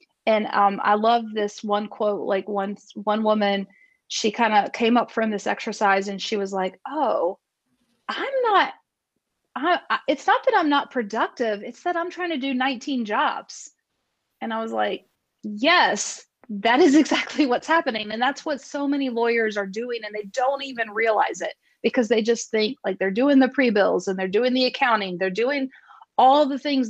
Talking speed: 185 wpm